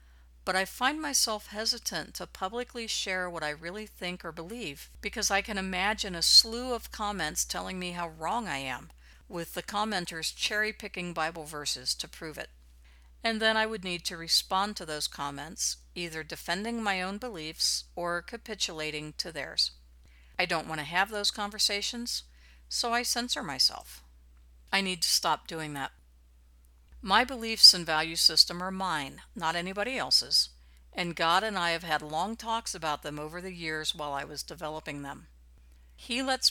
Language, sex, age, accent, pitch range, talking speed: English, female, 50-69, American, 130-205 Hz, 170 wpm